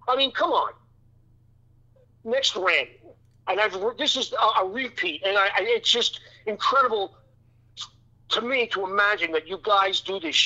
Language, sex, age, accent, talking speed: English, male, 50-69, American, 160 wpm